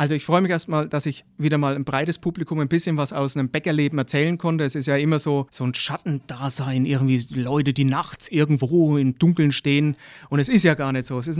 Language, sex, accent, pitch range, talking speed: German, male, German, 140-165 Hz, 235 wpm